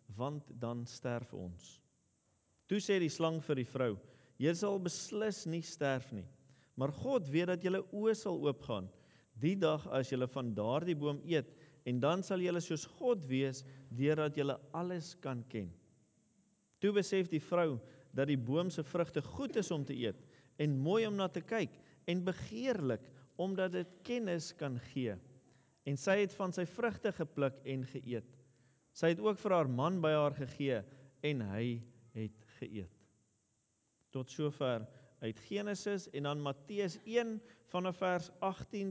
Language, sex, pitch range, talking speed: English, male, 125-180 Hz, 165 wpm